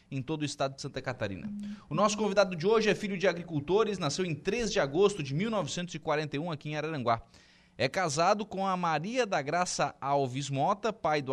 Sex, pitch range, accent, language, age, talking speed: male, 140-195 Hz, Brazilian, Portuguese, 20-39, 195 wpm